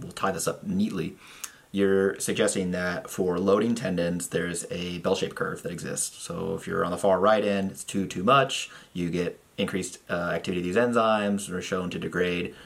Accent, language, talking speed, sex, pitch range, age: American, English, 200 wpm, male, 85-100 Hz, 30-49